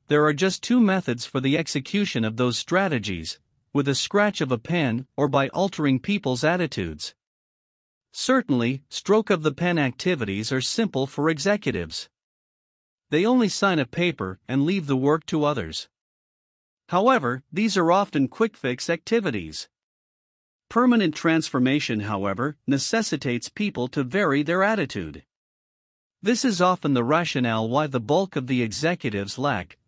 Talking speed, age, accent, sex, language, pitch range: 145 wpm, 50-69, American, male, English, 130-185 Hz